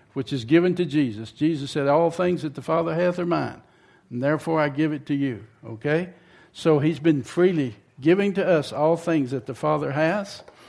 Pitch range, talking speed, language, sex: 125-175 Hz, 200 wpm, English, male